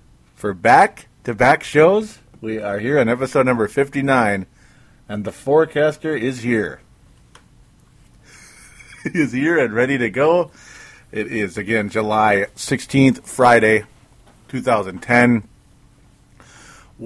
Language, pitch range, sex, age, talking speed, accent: English, 110-145 Hz, male, 40-59, 100 wpm, American